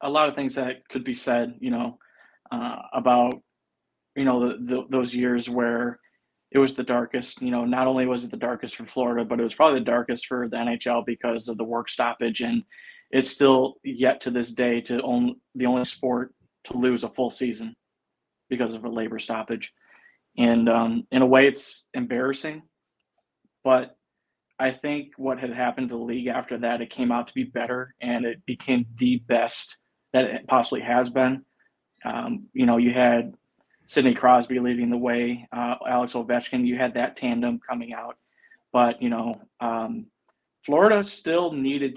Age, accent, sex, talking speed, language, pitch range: 20-39, American, male, 185 wpm, English, 120-130 Hz